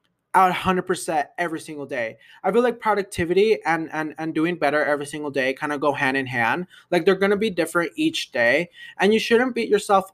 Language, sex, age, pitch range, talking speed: English, male, 20-39, 145-195 Hz, 215 wpm